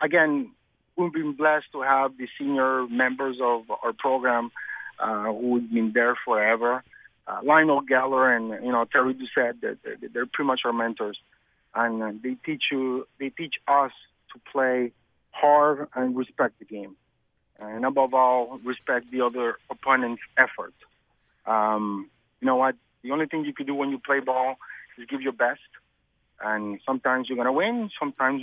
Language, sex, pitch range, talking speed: English, male, 120-140 Hz, 170 wpm